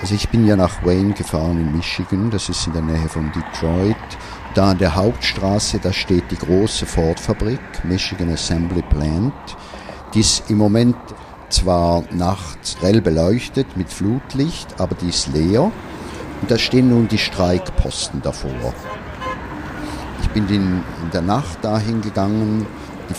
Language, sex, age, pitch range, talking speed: German, male, 50-69, 85-105 Hz, 150 wpm